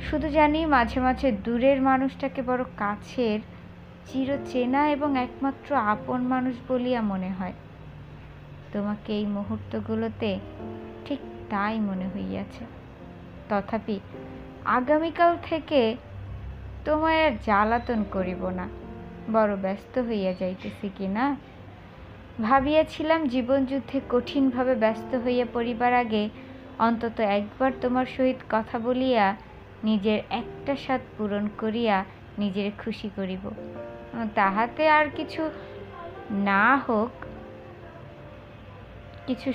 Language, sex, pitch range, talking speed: Bengali, female, 185-260 Hz, 100 wpm